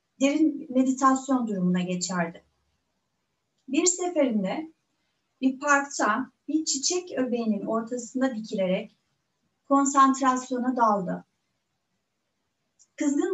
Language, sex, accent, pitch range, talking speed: Turkish, female, native, 210-285 Hz, 70 wpm